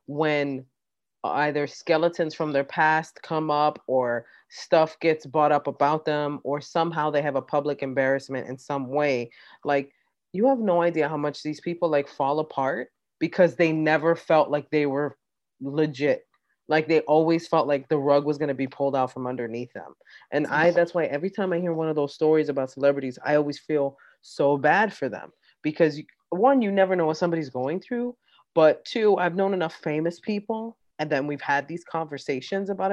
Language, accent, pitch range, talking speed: English, American, 140-170 Hz, 190 wpm